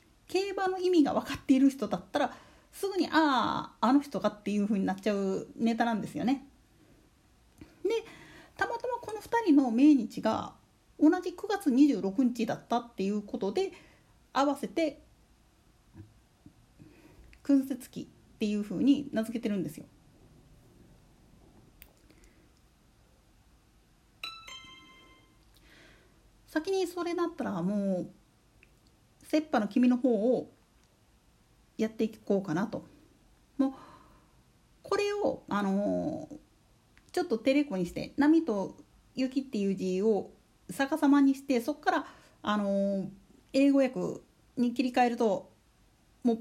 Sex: female